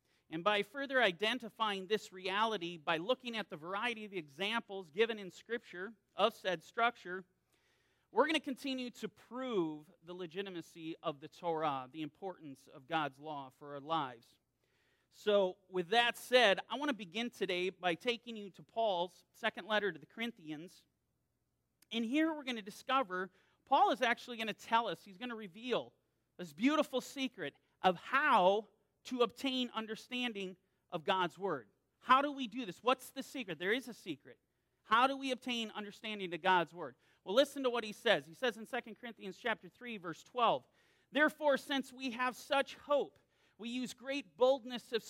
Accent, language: American, English